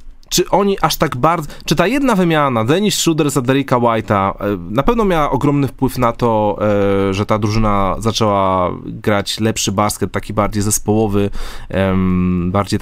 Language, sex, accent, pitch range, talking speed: Polish, male, native, 100-135 Hz, 150 wpm